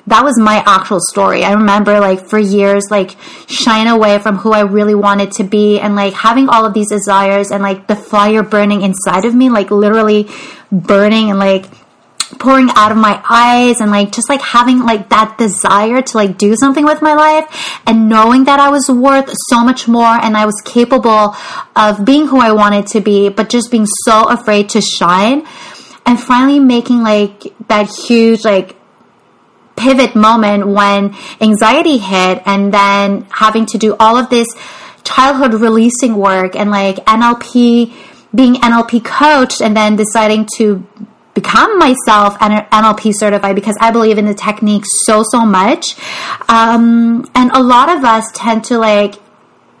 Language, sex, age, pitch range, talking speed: English, female, 20-39, 205-240 Hz, 170 wpm